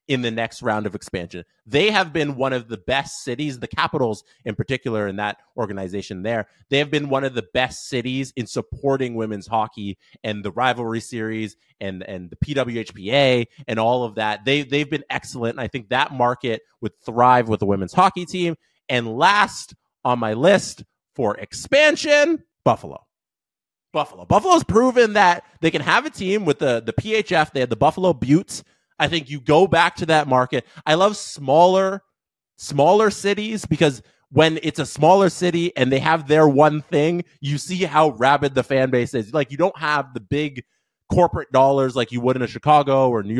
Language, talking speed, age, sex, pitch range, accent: English, 190 wpm, 30-49, male, 115-155 Hz, American